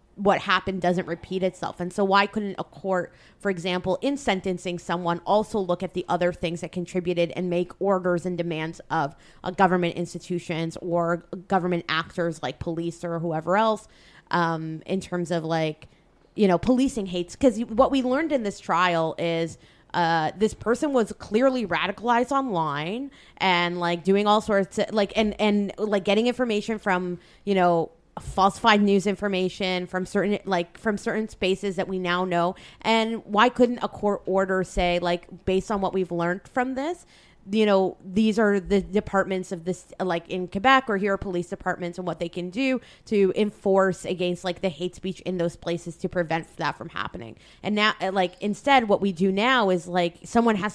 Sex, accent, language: female, American, English